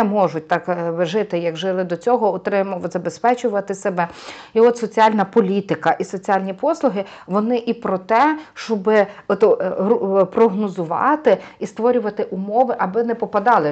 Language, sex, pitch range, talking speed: Ukrainian, female, 190-240 Hz, 120 wpm